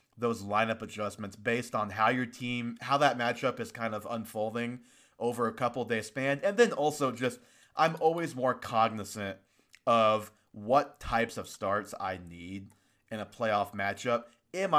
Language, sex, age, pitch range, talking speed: English, male, 30-49, 110-135 Hz, 160 wpm